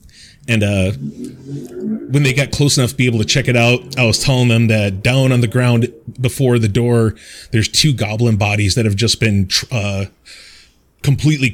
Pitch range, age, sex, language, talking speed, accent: 110-130 Hz, 30-49, male, English, 185 wpm, American